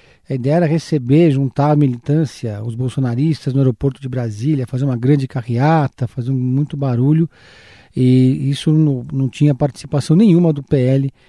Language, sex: Portuguese, male